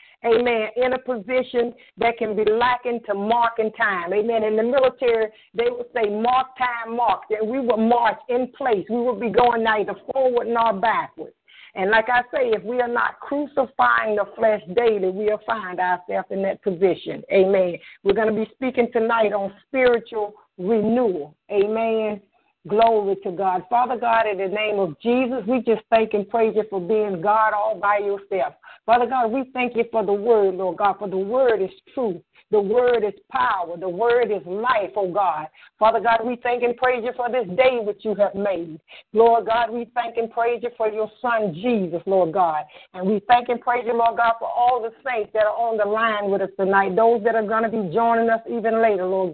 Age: 50-69